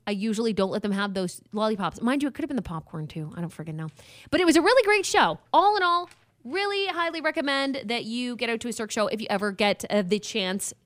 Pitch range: 190-275 Hz